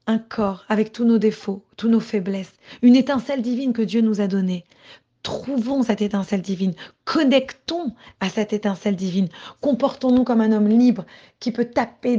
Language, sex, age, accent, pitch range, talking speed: French, female, 20-39, French, 200-230 Hz, 165 wpm